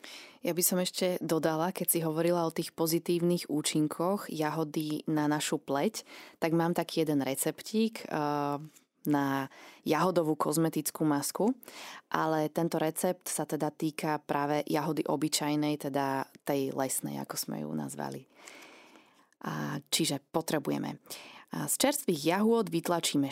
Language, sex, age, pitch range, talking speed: Slovak, female, 20-39, 145-175 Hz, 125 wpm